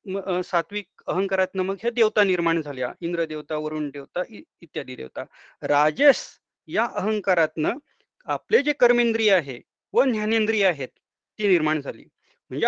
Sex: male